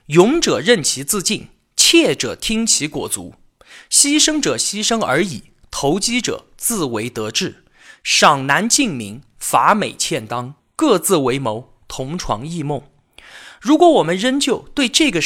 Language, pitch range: Chinese, 140-235 Hz